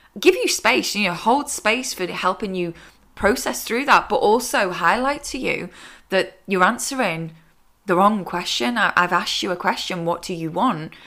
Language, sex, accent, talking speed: English, female, British, 180 wpm